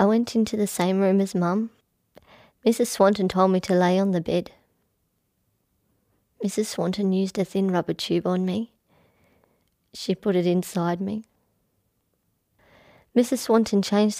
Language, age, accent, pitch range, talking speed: English, 20-39, Australian, 195-245 Hz, 145 wpm